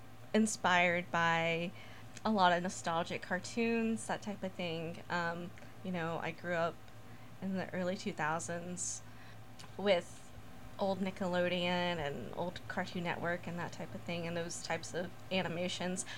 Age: 20-39